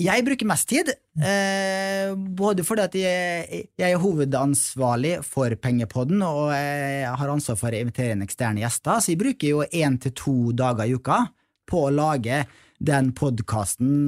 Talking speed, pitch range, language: 160 wpm, 125-165 Hz, English